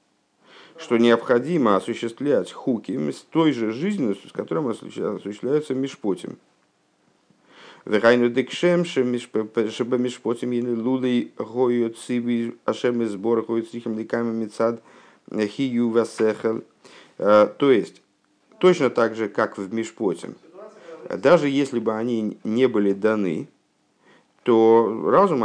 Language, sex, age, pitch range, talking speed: Russian, male, 50-69, 100-130 Hz, 70 wpm